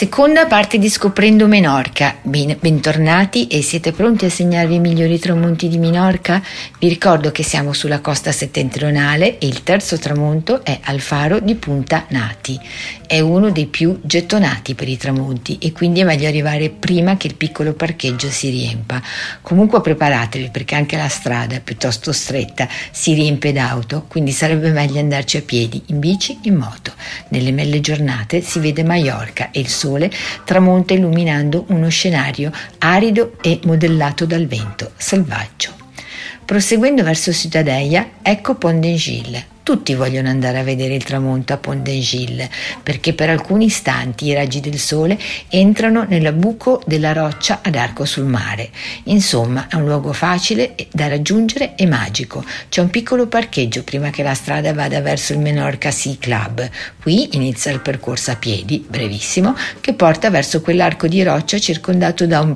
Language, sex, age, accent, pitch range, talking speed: Italian, female, 50-69, native, 135-175 Hz, 165 wpm